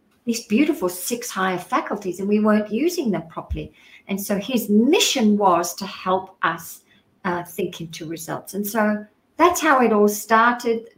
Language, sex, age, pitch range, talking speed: English, female, 50-69, 200-260 Hz, 165 wpm